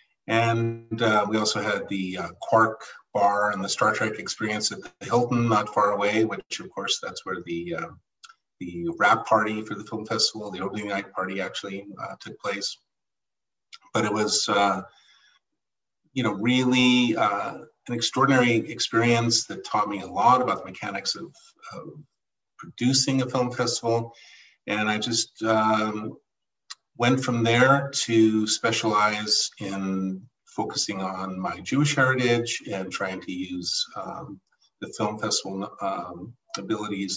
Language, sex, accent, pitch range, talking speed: English, male, American, 100-125 Hz, 145 wpm